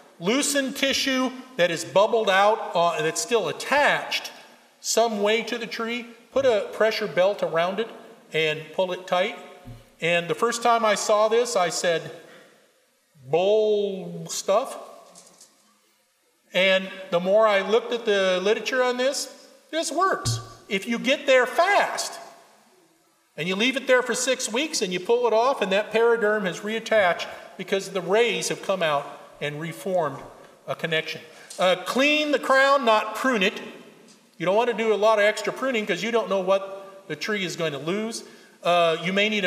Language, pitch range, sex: English, 170-225 Hz, male